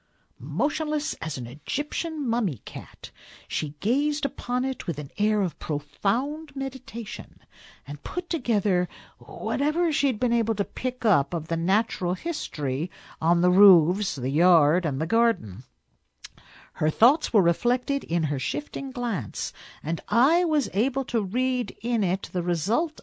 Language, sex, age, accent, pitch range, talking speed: English, female, 60-79, American, 150-240 Hz, 145 wpm